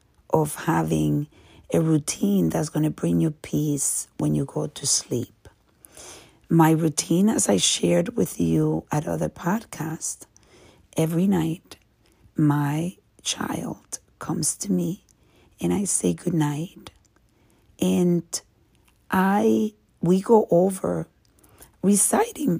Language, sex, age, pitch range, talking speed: English, female, 50-69, 110-170 Hz, 110 wpm